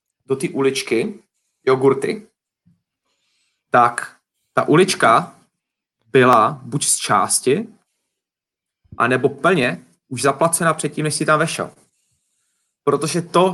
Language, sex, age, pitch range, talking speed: Czech, male, 30-49, 135-165 Hz, 95 wpm